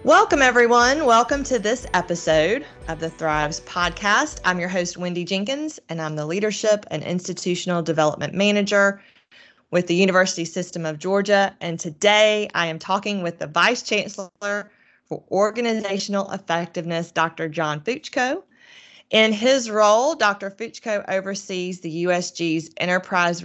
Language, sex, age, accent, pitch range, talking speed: English, female, 30-49, American, 175-210 Hz, 135 wpm